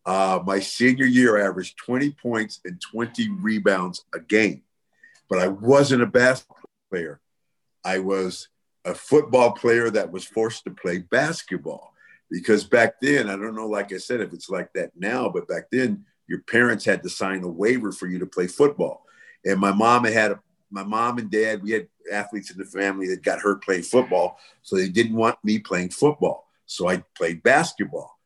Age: 50-69